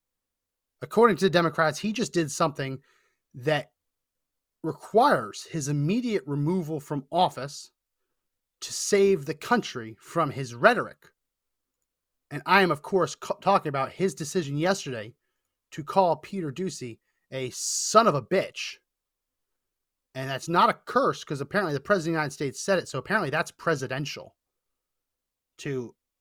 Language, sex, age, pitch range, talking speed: English, male, 30-49, 145-190 Hz, 140 wpm